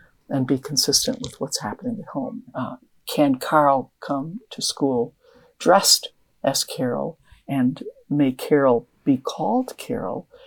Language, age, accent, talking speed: English, 60-79, American, 130 wpm